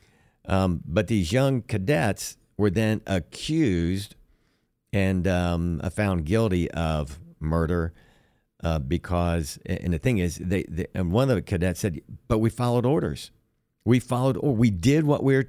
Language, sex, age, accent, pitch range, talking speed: English, male, 60-79, American, 85-110 Hz, 155 wpm